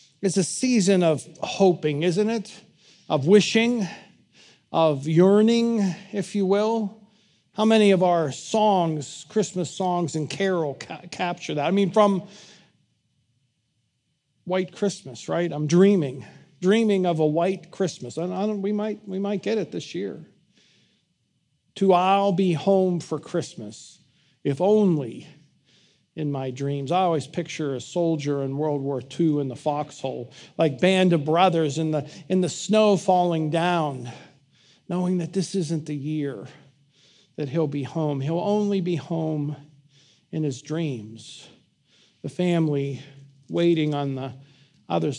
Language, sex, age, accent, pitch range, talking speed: English, male, 50-69, American, 145-190 Hz, 140 wpm